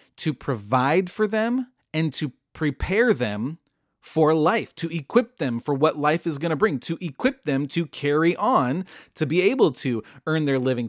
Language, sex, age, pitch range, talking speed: English, male, 30-49, 135-180 Hz, 180 wpm